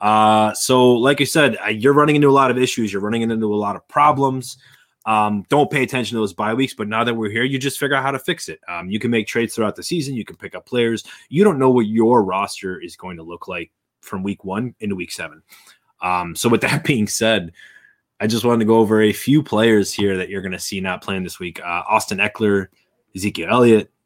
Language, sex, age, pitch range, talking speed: English, male, 20-39, 100-130 Hz, 250 wpm